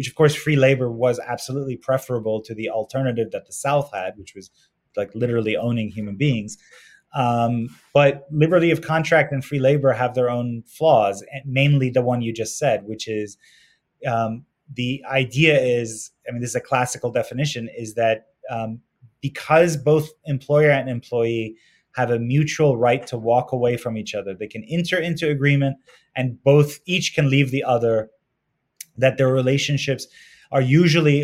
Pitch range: 115-140 Hz